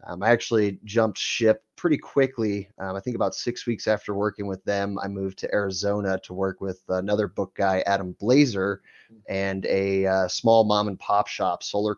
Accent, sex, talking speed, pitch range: American, male, 190 wpm, 100-120 Hz